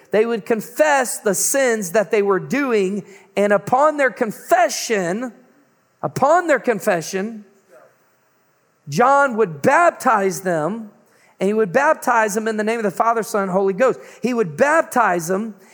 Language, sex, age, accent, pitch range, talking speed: English, male, 40-59, American, 195-245 Hz, 150 wpm